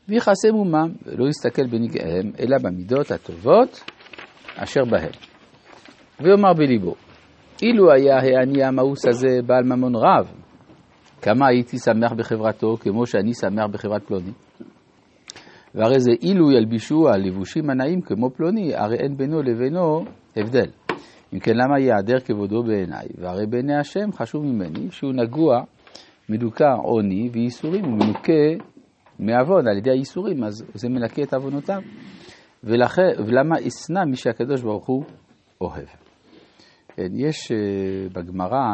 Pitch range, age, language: 105-145 Hz, 50-69, Hebrew